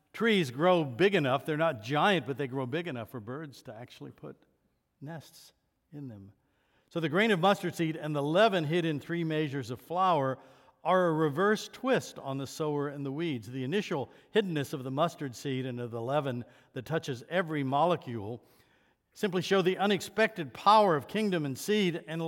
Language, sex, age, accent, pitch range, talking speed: English, male, 60-79, American, 130-175 Hz, 190 wpm